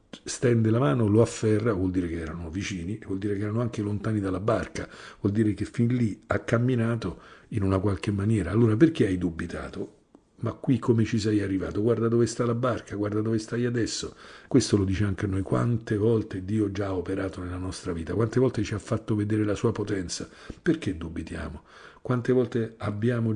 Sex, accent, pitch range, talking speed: male, native, 95-115 Hz, 200 wpm